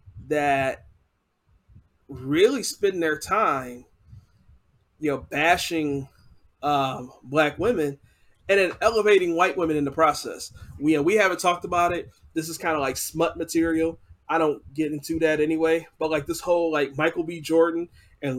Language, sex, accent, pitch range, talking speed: English, male, American, 130-170 Hz, 160 wpm